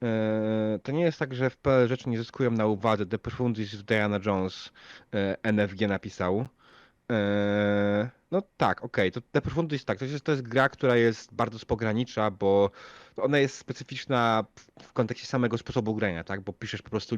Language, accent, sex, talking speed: Polish, native, male, 180 wpm